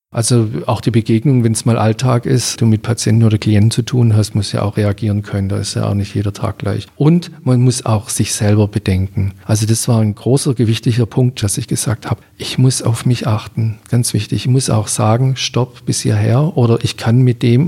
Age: 50-69